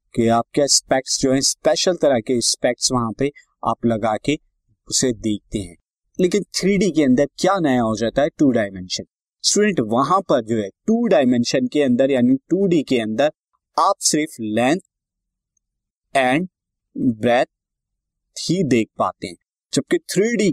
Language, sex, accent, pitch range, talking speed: Hindi, male, native, 110-160 Hz, 150 wpm